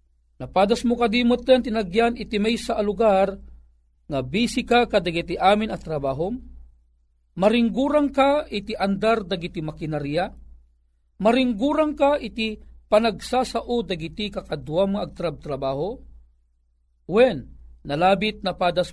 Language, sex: Filipino, male